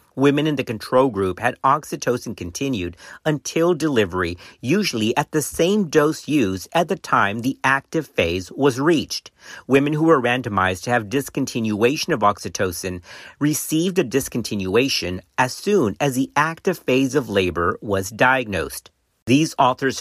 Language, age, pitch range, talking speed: English, 50-69, 105-155 Hz, 145 wpm